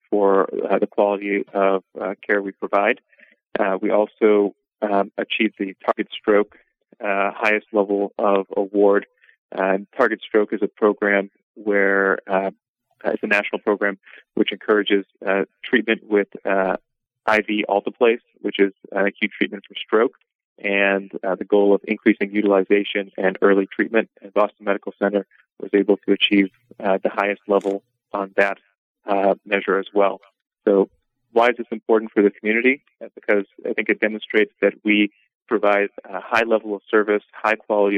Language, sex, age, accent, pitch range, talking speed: English, male, 30-49, American, 100-105 Hz, 160 wpm